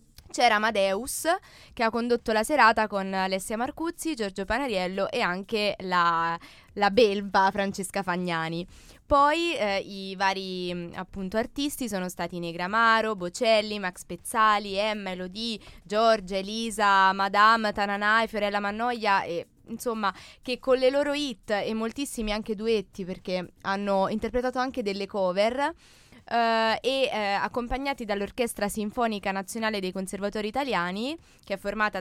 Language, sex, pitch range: Italian, female, 190-230 Hz